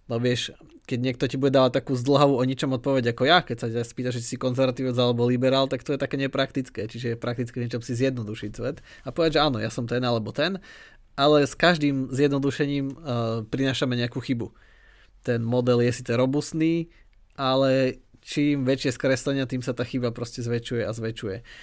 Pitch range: 120-145 Hz